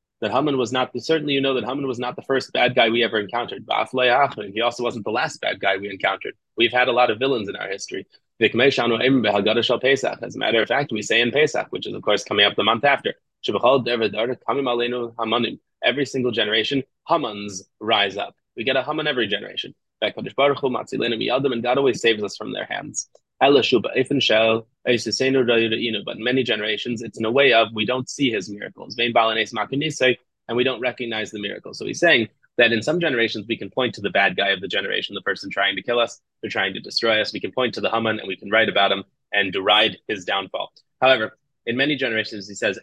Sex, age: male, 20-39